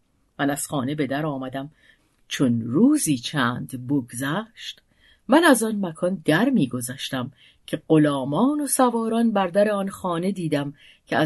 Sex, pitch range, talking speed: female, 150-205 Hz, 140 wpm